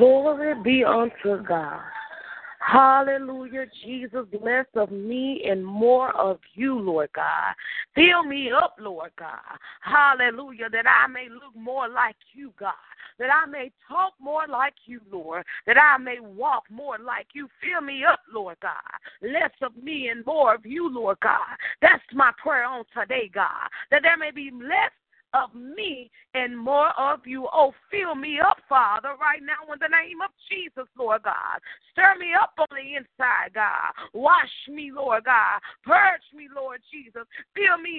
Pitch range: 245-310 Hz